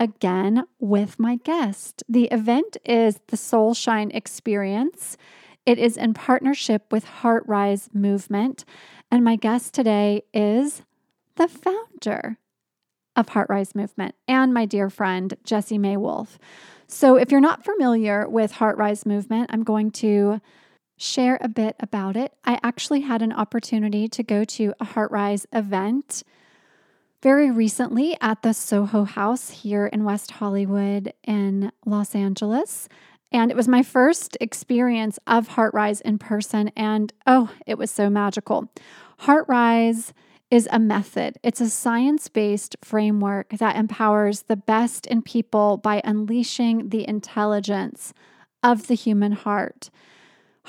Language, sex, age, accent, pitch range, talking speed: English, female, 30-49, American, 210-240 Hz, 140 wpm